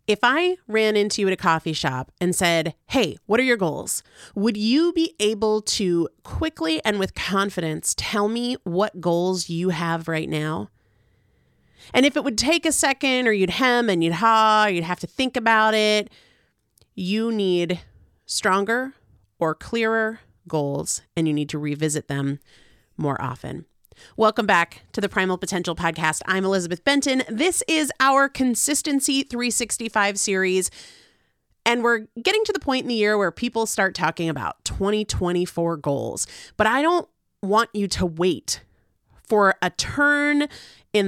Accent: American